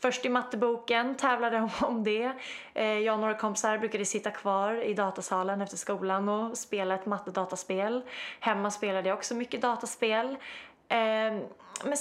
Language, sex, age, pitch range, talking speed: Swedish, female, 20-39, 195-245 Hz, 150 wpm